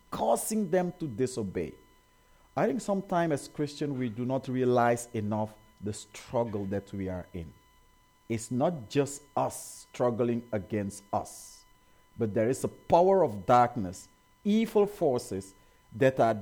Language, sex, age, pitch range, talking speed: English, male, 50-69, 100-140 Hz, 140 wpm